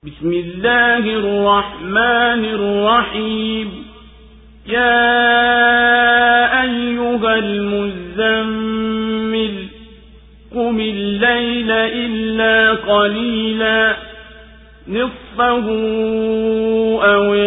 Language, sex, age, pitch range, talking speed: Swahili, male, 50-69, 210-235 Hz, 45 wpm